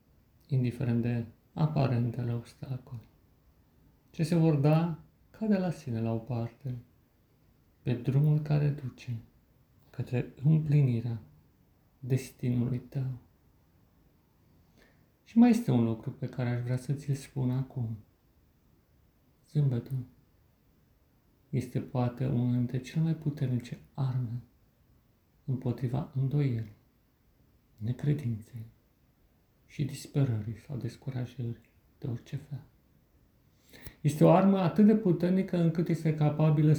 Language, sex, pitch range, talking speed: Romanian, male, 120-150 Hz, 105 wpm